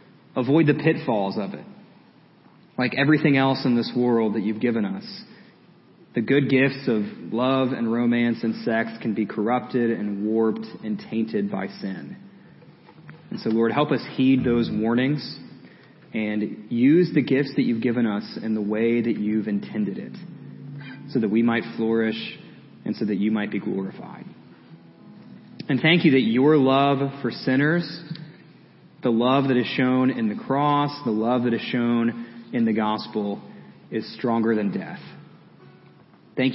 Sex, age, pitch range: male, 30-49, 110-145 Hz